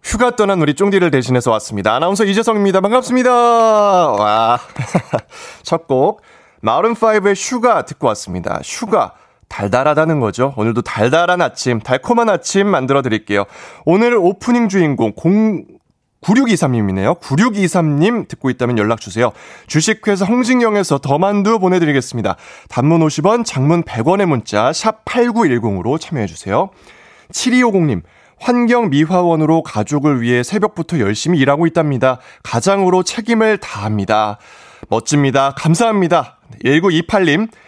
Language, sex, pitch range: Korean, male, 125-200 Hz